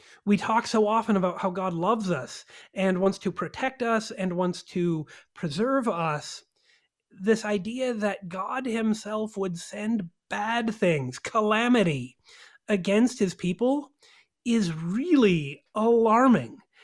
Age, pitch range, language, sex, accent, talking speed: 30-49, 190-245 Hz, English, male, American, 125 wpm